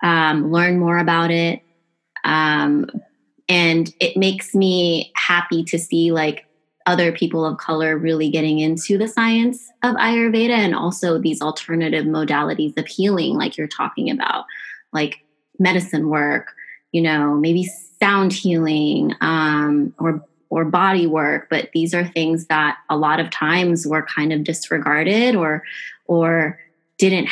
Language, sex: English, female